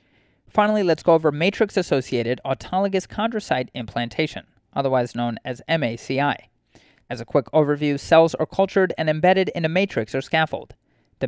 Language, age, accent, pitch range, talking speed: English, 30-49, American, 125-180 Hz, 145 wpm